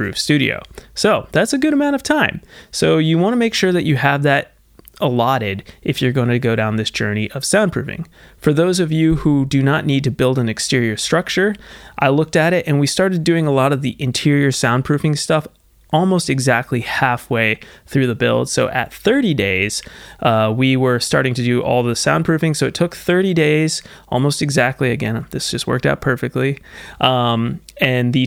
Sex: male